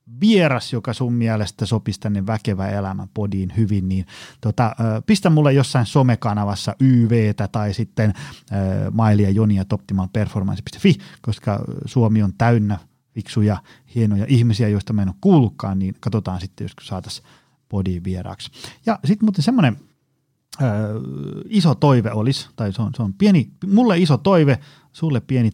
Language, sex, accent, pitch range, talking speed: Finnish, male, native, 105-140 Hz, 140 wpm